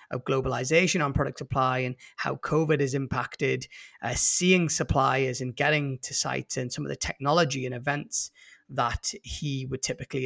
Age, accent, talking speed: 30-49, British, 165 wpm